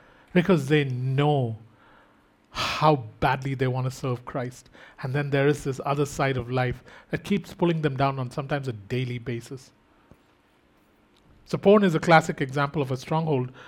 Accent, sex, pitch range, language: Indian, male, 135-170 Hz, English